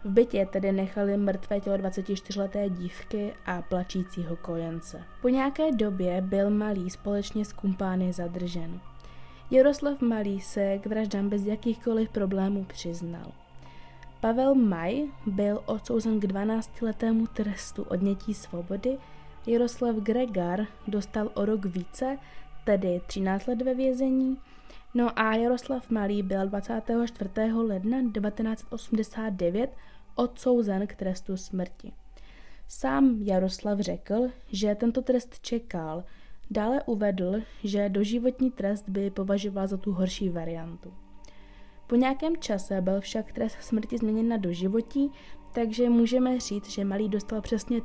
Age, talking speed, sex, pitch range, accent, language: 20-39, 120 wpm, female, 190-235 Hz, native, Czech